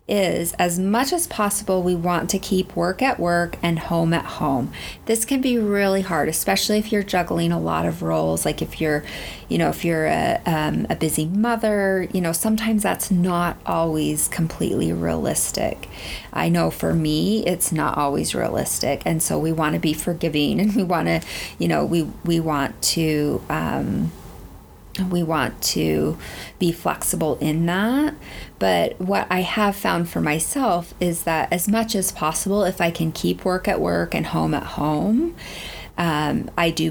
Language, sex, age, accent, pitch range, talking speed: English, female, 30-49, American, 155-190 Hz, 175 wpm